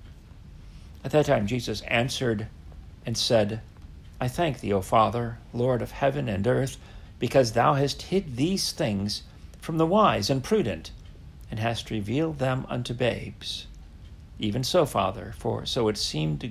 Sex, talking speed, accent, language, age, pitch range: male, 150 wpm, American, English, 50-69, 95-135 Hz